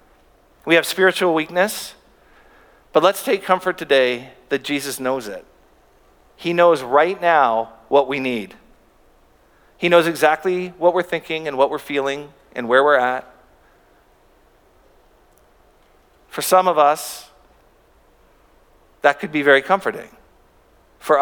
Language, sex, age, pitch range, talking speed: English, male, 50-69, 135-175 Hz, 125 wpm